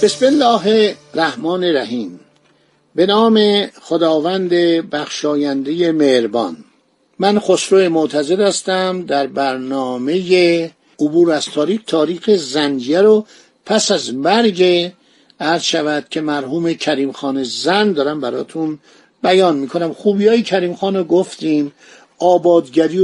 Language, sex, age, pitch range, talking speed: Persian, male, 50-69, 165-220 Hz, 110 wpm